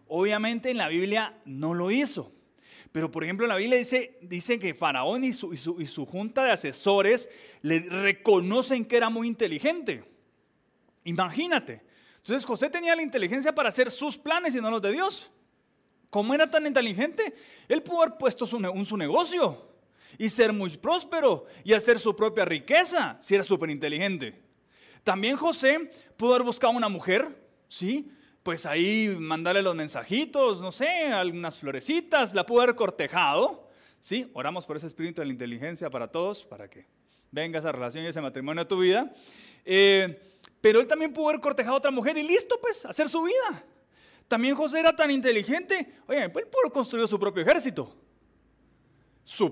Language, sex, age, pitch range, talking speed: Spanish, male, 30-49, 180-295 Hz, 170 wpm